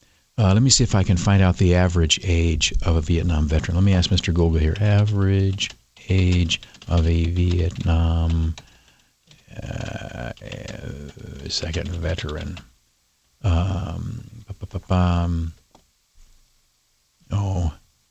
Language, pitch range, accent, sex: English, 85-100 Hz, American, male